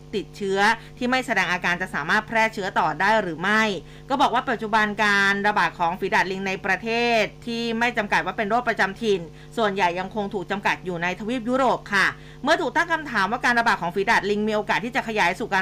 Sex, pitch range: female, 195-240 Hz